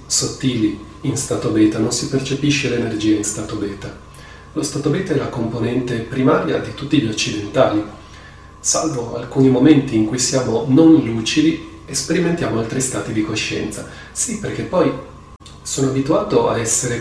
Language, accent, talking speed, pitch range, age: Italian, native, 150 wpm, 110-140 Hz, 30-49